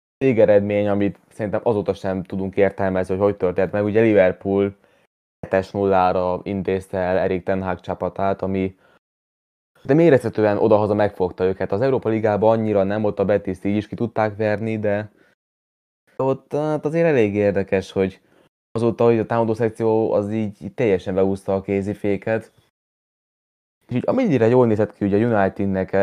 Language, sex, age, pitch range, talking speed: Hungarian, male, 20-39, 95-110 Hz, 150 wpm